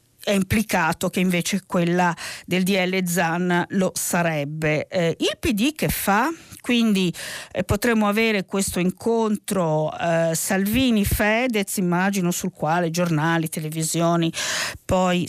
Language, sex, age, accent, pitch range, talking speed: Italian, female, 50-69, native, 170-215 Hz, 120 wpm